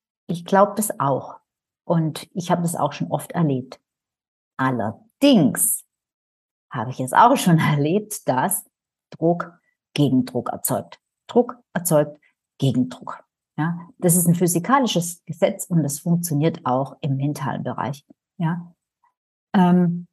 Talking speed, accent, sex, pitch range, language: 120 wpm, German, female, 160-210 Hz, German